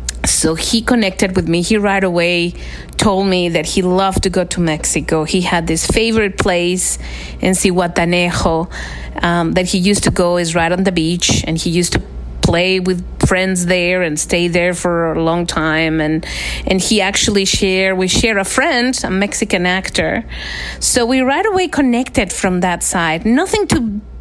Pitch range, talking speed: 175-225 Hz, 175 wpm